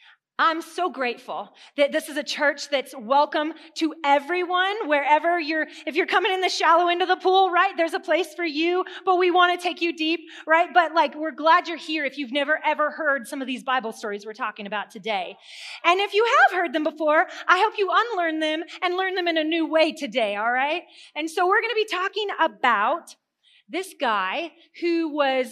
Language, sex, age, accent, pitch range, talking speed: English, female, 30-49, American, 275-355 Hz, 215 wpm